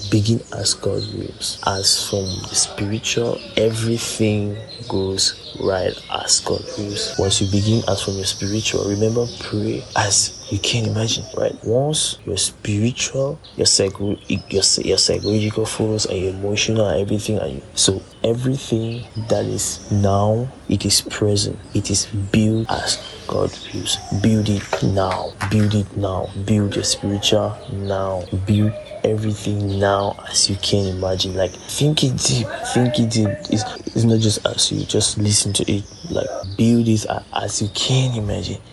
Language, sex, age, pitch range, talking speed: English, male, 20-39, 100-110 Hz, 160 wpm